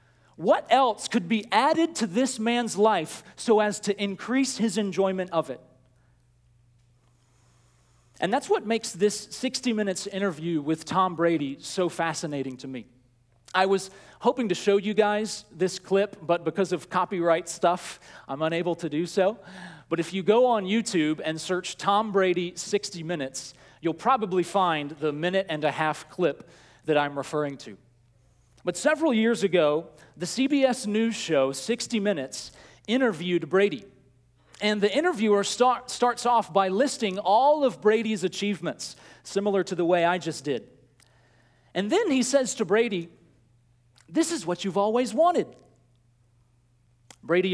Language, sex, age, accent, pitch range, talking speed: English, male, 40-59, American, 140-215 Hz, 150 wpm